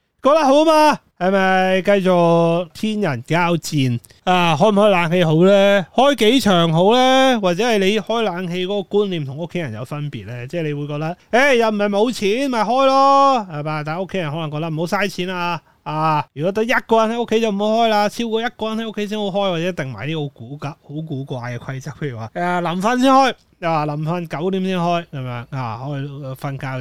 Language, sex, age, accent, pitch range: Chinese, male, 30-49, native, 145-205 Hz